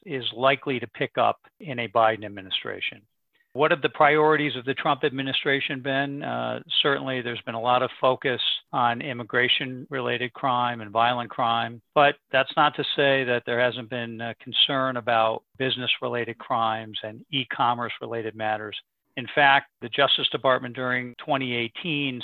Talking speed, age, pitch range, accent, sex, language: 150 wpm, 50-69, 115-135 Hz, American, male, English